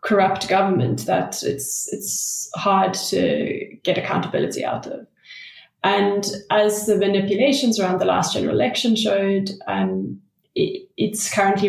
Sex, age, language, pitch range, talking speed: female, 20-39, English, 190-210 Hz, 135 wpm